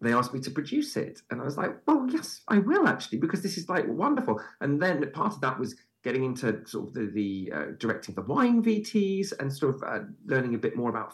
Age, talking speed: 40-59, 250 wpm